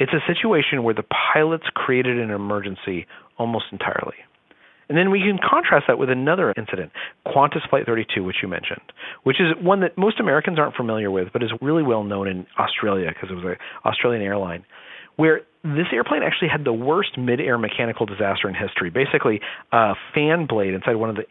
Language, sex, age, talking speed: English, male, 40-59, 190 wpm